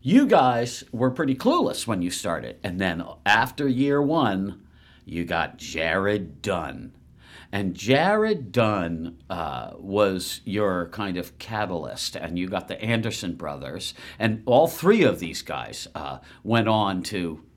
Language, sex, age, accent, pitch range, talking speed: English, male, 50-69, American, 90-125 Hz, 145 wpm